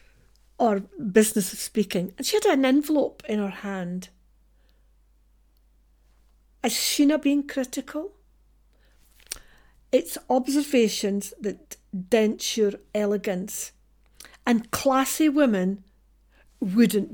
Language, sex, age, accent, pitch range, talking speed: English, female, 50-69, British, 195-245 Hz, 90 wpm